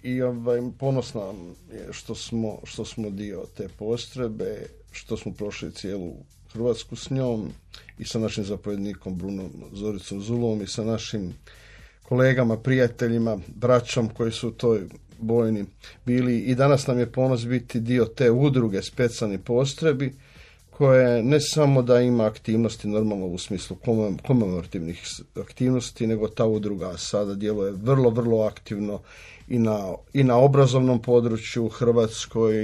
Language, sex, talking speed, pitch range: Croatian, male, 145 wpm, 105-125 Hz